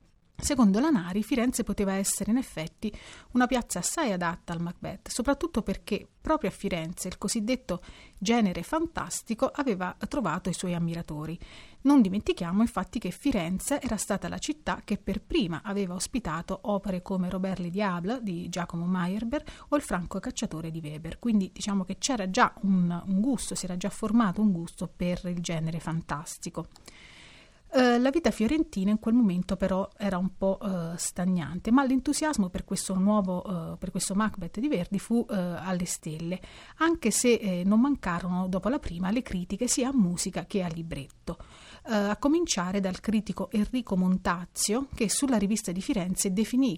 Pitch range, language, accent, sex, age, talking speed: 180-230 Hz, Italian, native, female, 30-49, 155 wpm